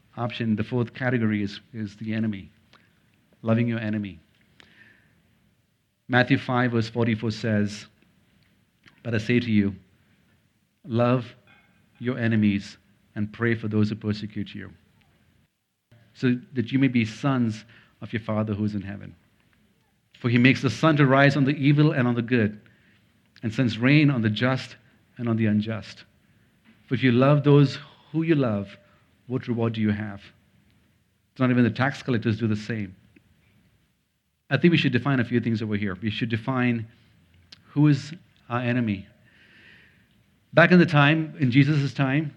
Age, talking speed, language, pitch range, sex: 50-69, 160 wpm, English, 105-135 Hz, male